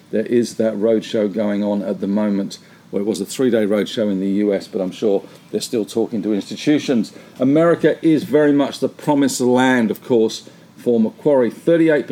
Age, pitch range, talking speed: 50-69, 110-145 Hz, 185 wpm